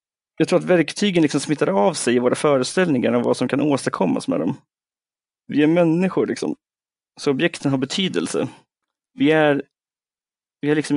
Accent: native